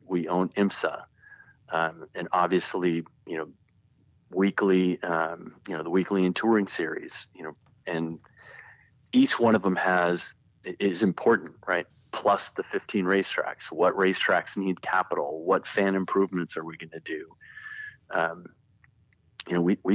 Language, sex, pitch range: English, male, 85-100 Hz